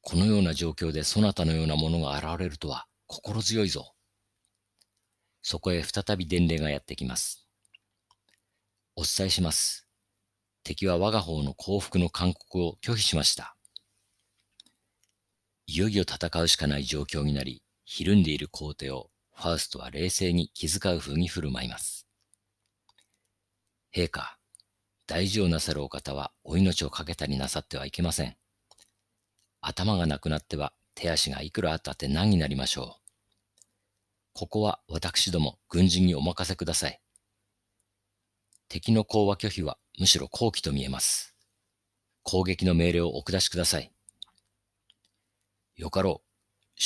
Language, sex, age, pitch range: Japanese, male, 50-69, 80-100 Hz